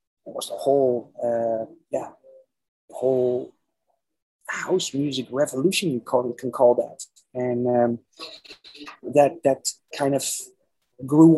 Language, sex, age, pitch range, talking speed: English, male, 30-49, 120-145 Hz, 115 wpm